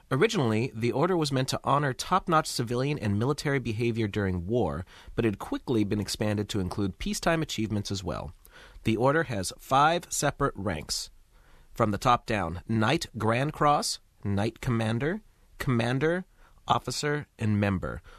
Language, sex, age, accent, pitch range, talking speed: English, male, 30-49, American, 95-130 Hz, 145 wpm